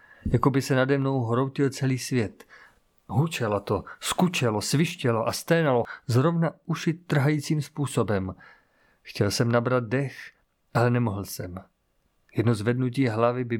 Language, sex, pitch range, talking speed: Czech, male, 115-135 Hz, 130 wpm